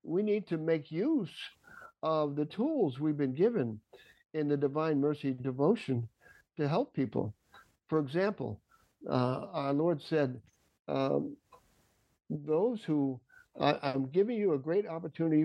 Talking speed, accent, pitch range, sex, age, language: 135 wpm, American, 135-175 Hz, male, 60-79, English